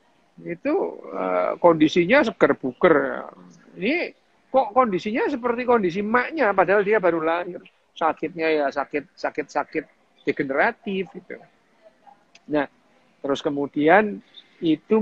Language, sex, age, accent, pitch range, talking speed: Indonesian, male, 50-69, native, 145-200 Hz, 105 wpm